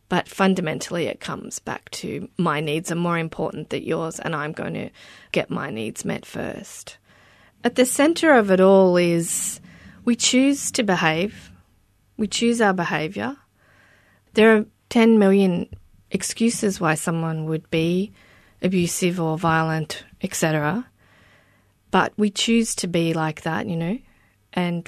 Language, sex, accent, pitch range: English, female, Australian, 165-220 Hz